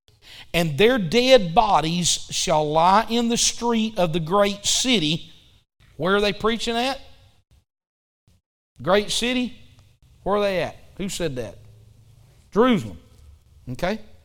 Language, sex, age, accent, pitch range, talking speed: English, male, 40-59, American, 135-210 Hz, 120 wpm